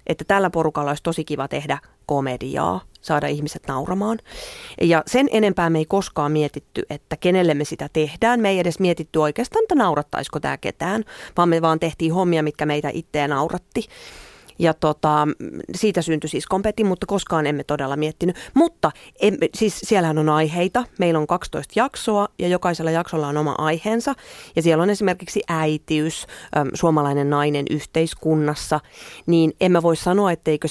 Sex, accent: female, native